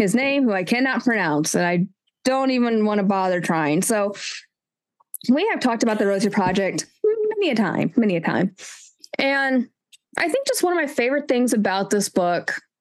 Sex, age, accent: female, 20-39, American